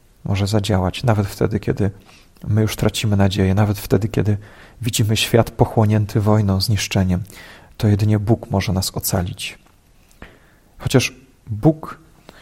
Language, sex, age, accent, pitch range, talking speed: Polish, male, 40-59, native, 100-120 Hz, 120 wpm